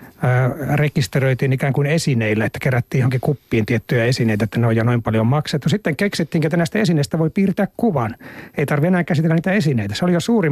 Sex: male